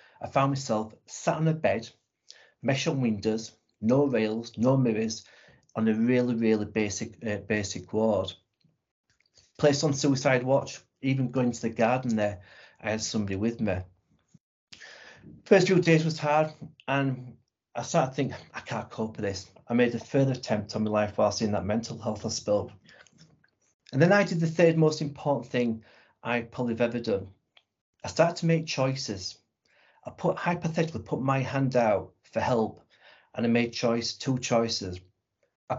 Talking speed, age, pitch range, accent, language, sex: 170 wpm, 40-59, 110-140 Hz, British, English, male